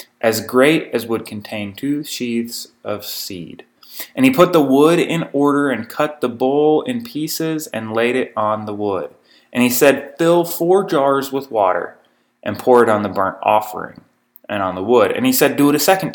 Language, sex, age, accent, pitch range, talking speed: English, male, 20-39, American, 110-145 Hz, 200 wpm